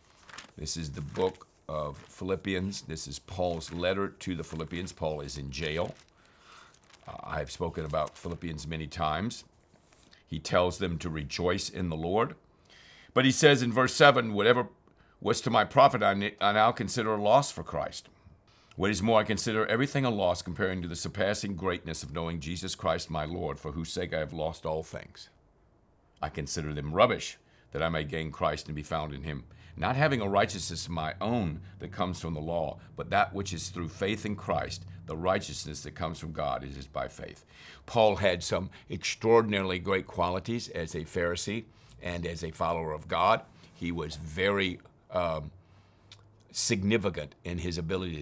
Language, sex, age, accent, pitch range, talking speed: English, male, 50-69, American, 80-100 Hz, 180 wpm